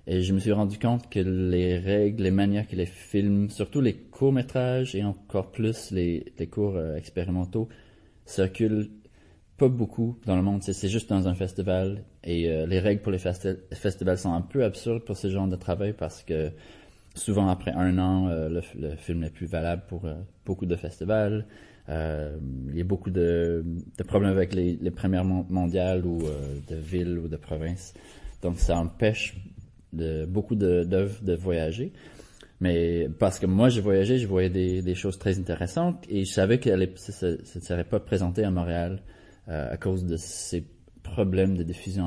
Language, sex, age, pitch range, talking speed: French, male, 20-39, 85-100 Hz, 195 wpm